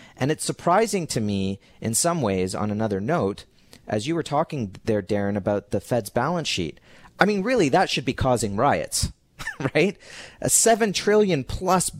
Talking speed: 170 wpm